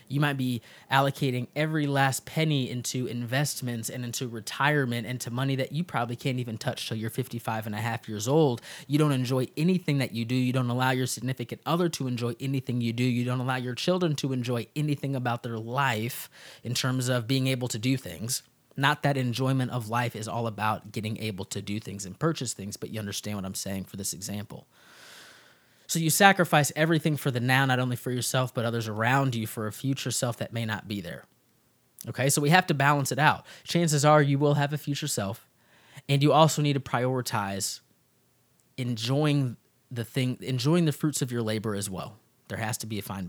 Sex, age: male, 20-39